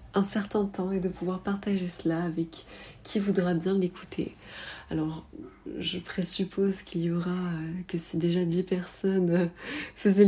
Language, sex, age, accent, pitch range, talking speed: French, female, 30-49, French, 170-195 Hz, 160 wpm